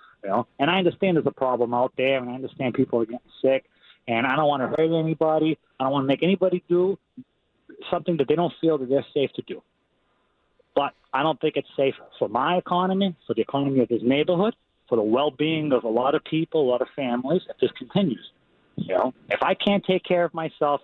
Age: 30-49